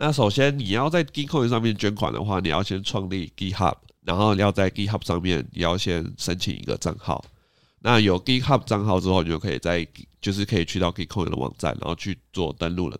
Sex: male